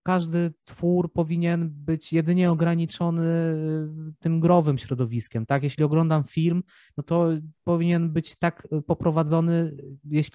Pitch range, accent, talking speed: 145-170 Hz, native, 115 wpm